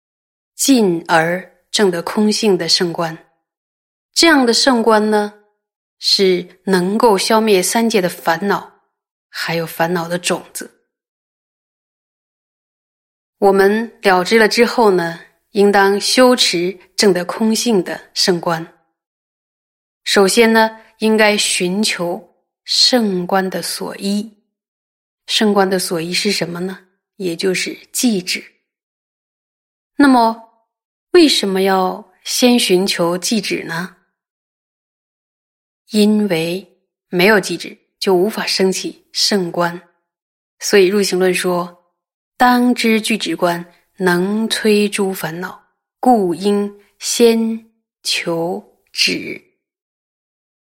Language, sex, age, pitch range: Chinese, female, 20-39, 180-225 Hz